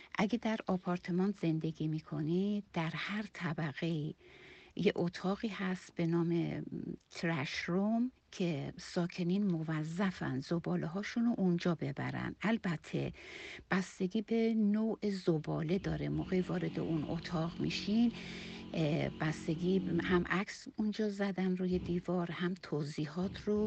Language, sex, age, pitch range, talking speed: Persian, female, 60-79, 170-195 Hz, 105 wpm